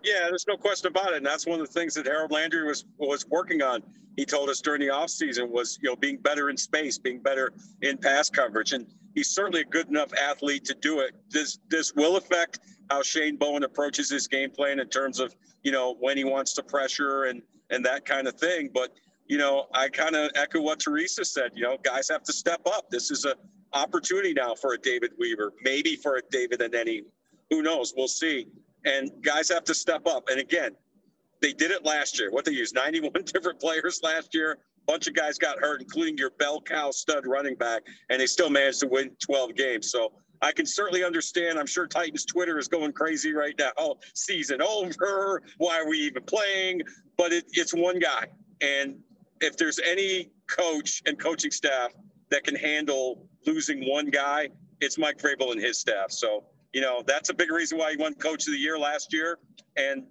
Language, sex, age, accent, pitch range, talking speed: English, male, 50-69, American, 145-195 Hz, 215 wpm